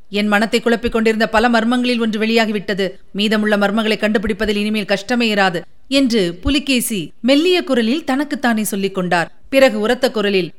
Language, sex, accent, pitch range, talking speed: Tamil, female, native, 200-245 Hz, 135 wpm